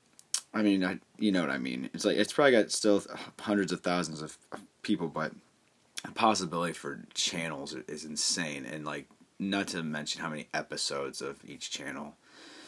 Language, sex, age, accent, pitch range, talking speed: English, male, 20-39, American, 80-100 Hz, 180 wpm